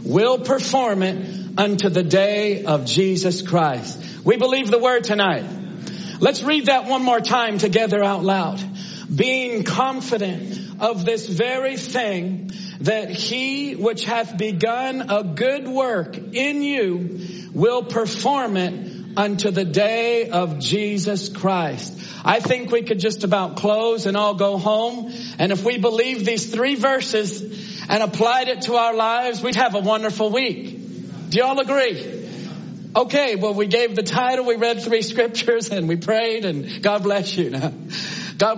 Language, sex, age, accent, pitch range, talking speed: English, male, 50-69, American, 185-235 Hz, 155 wpm